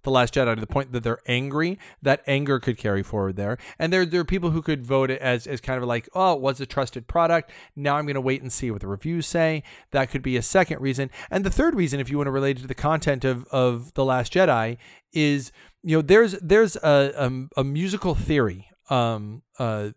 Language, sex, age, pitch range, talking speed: English, male, 40-59, 125-170 Hz, 245 wpm